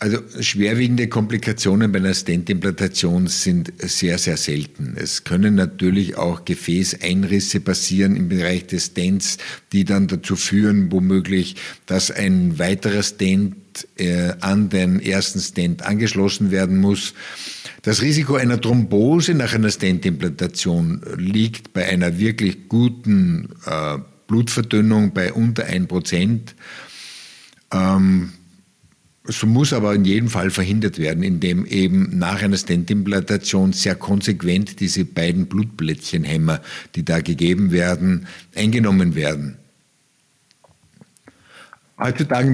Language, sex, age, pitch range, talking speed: German, male, 50-69, 95-115 Hz, 115 wpm